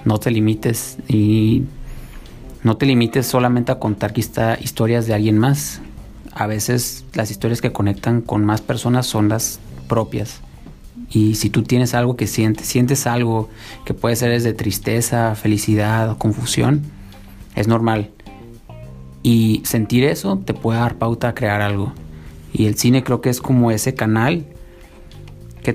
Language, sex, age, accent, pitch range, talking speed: Spanish, male, 30-49, Mexican, 105-125 Hz, 155 wpm